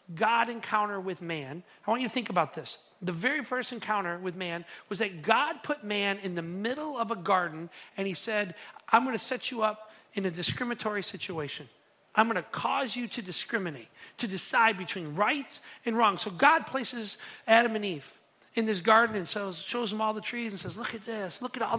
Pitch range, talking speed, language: 180-230 Hz, 215 wpm, English